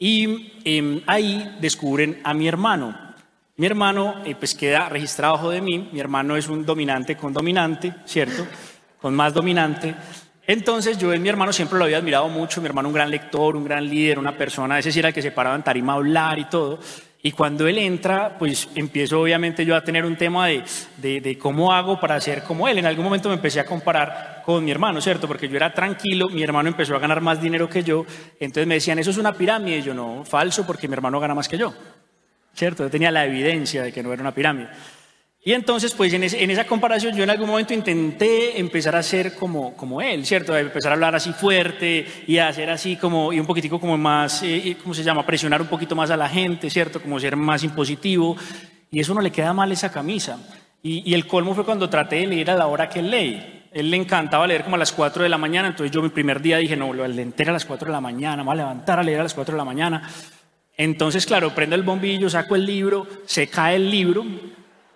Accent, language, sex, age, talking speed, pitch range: Colombian, Spanish, male, 30-49, 240 wpm, 150-185 Hz